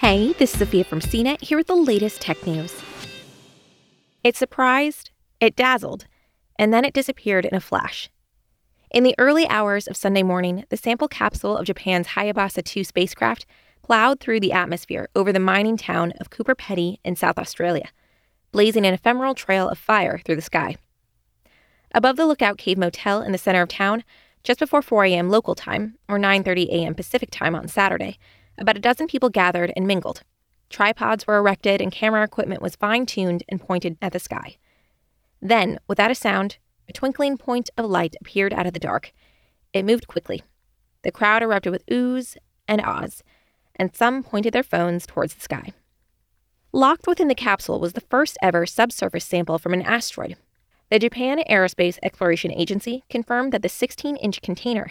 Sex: female